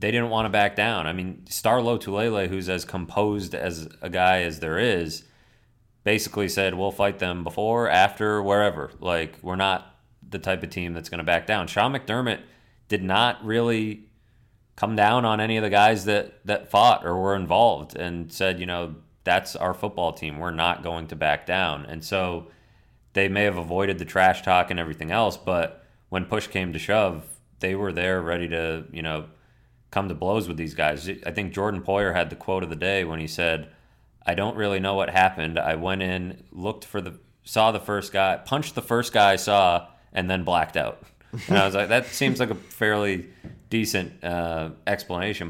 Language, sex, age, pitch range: English, male, 30-49, 85-105 Hz